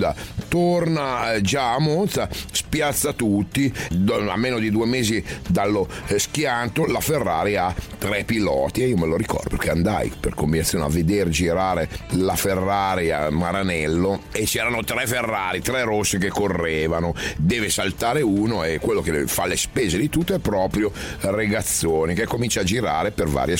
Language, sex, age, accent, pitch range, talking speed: Italian, male, 40-59, native, 85-115 Hz, 160 wpm